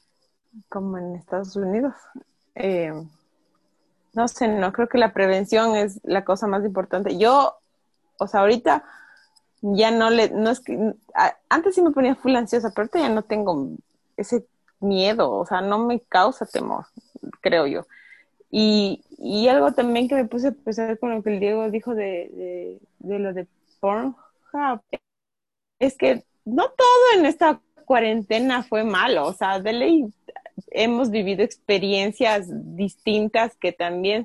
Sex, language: female, Spanish